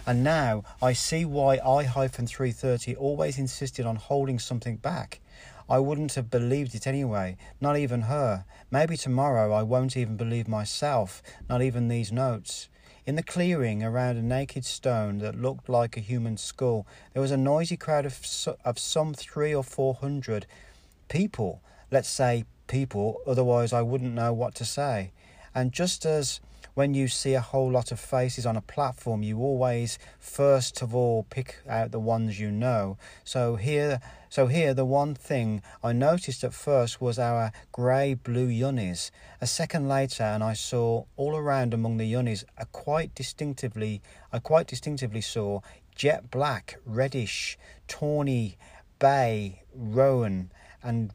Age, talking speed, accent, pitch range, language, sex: 40-59, 160 wpm, British, 110-135 Hz, English, male